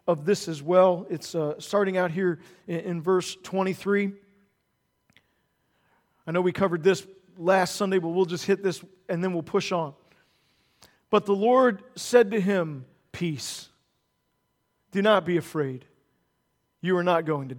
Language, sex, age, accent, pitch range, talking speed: English, male, 40-59, American, 185-240 Hz, 155 wpm